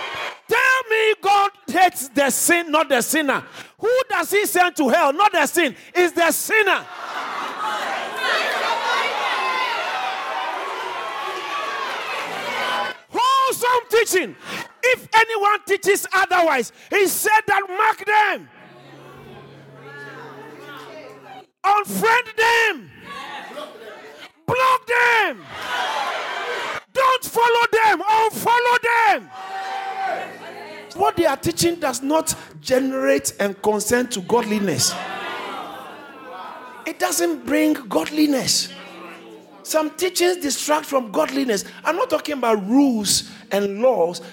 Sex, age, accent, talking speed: male, 40-59, Nigerian, 90 wpm